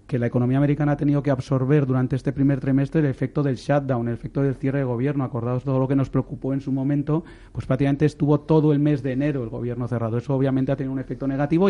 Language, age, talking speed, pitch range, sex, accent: Spanish, 30-49, 250 wpm, 130-150 Hz, male, Spanish